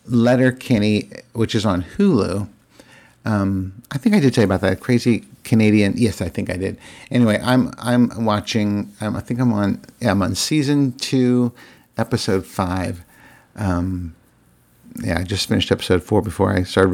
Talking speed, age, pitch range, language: 170 wpm, 50-69, 100-130 Hz, English